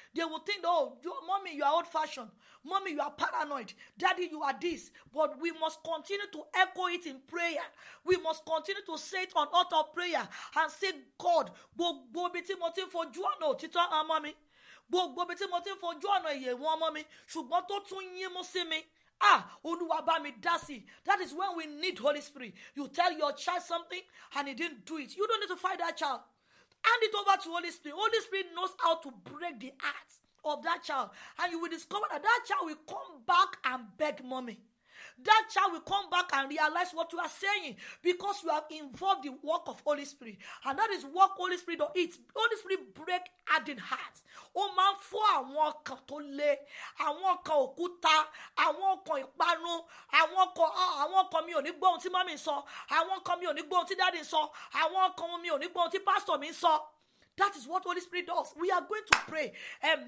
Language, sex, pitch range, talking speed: English, female, 305-375 Hz, 180 wpm